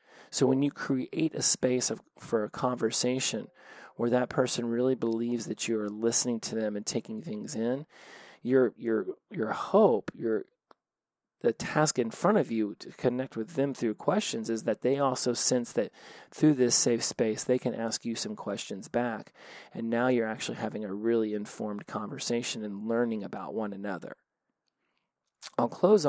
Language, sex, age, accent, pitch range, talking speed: English, male, 30-49, American, 110-130 Hz, 170 wpm